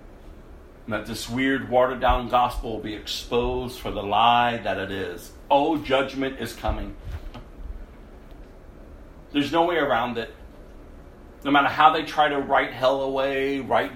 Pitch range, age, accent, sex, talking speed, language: 75-125 Hz, 50-69, American, male, 150 wpm, English